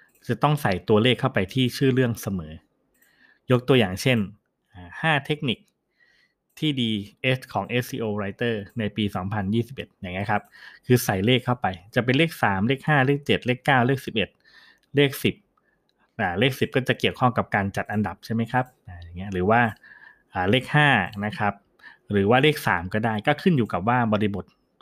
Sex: male